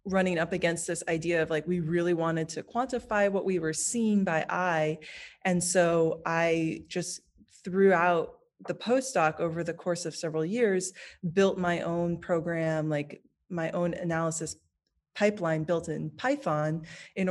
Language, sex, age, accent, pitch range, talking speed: English, female, 20-39, American, 160-200 Hz, 155 wpm